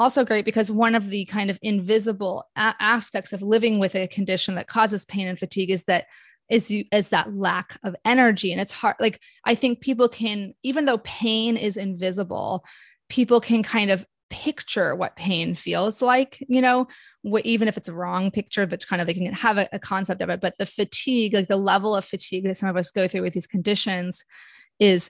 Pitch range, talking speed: 190-230 Hz, 220 wpm